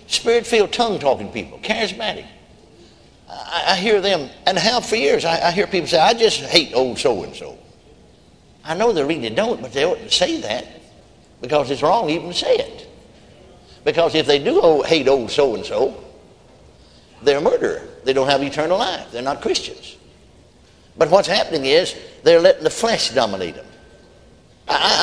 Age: 60-79